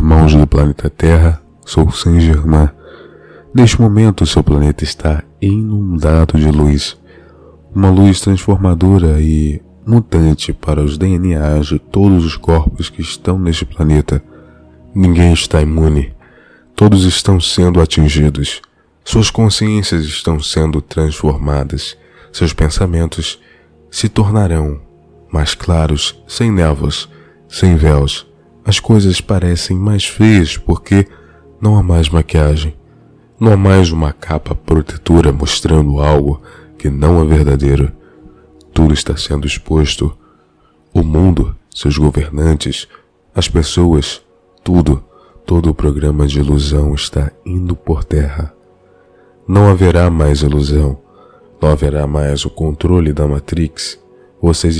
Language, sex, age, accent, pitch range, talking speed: English, male, 20-39, Brazilian, 75-90 Hz, 120 wpm